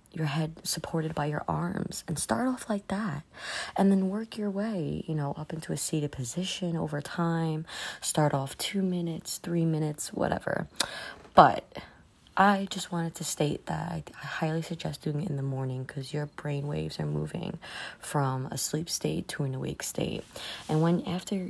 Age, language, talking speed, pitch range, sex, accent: 20-39, English, 180 wpm, 140-185 Hz, female, American